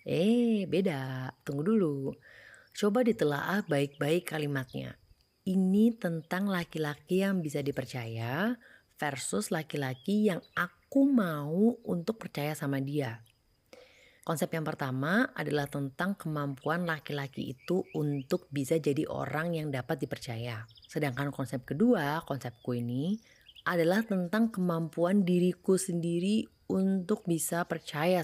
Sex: female